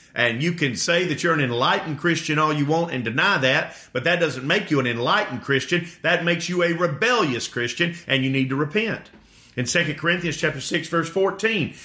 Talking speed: 210 wpm